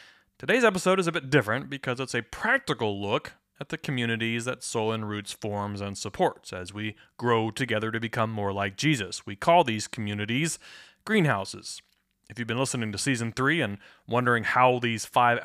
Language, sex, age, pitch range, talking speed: English, male, 30-49, 110-145 Hz, 185 wpm